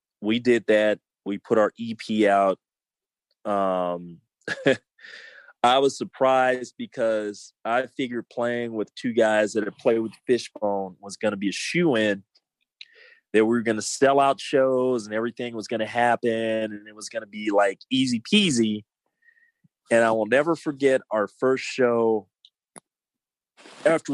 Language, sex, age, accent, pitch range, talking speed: English, male, 30-49, American, 105-130 Hz, 155 wpm